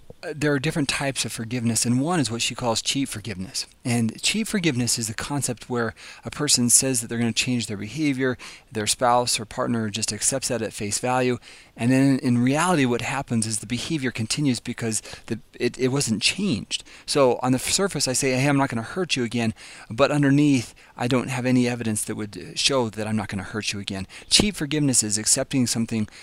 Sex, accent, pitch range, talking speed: male, American, 110-135 Hz, 215 wpm